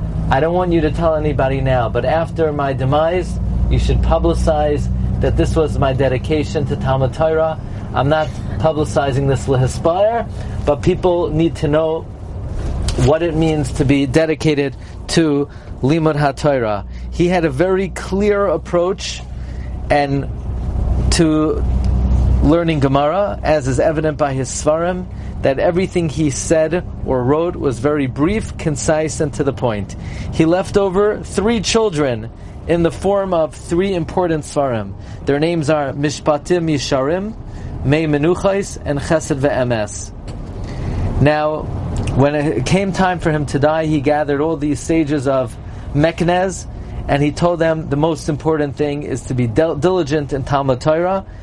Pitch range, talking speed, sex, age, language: 125-160 Hz, 145 wpm, male, 40-59, English